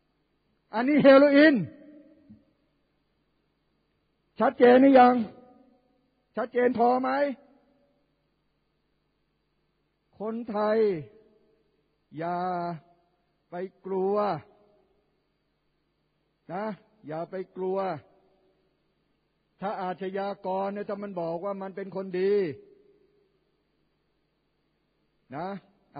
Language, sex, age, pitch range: Thai, male, 60-79, 185-235 Hz